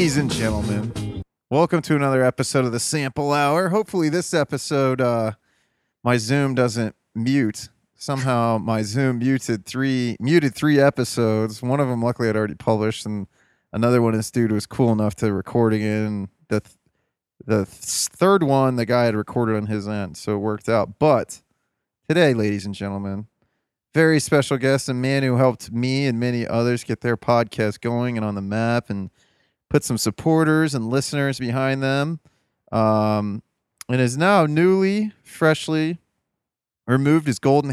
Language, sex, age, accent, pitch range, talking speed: English, male, 30-49, American, 110-135 Hz, 165 wpm